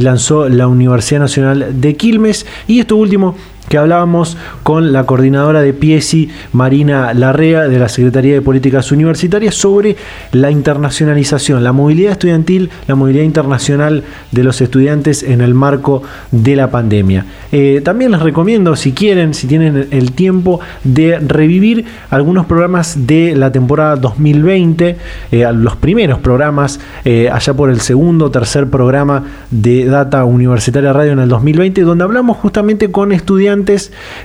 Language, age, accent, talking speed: Spanish, 20-39, Argentinian, 145 wpm